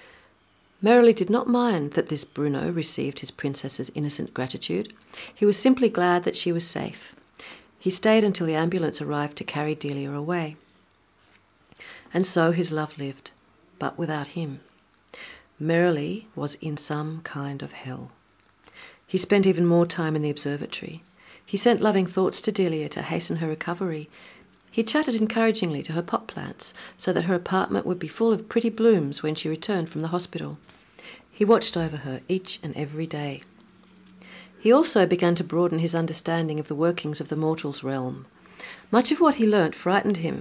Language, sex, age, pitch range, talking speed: English, female, 40-59, 150-200 Hz, 170 wpm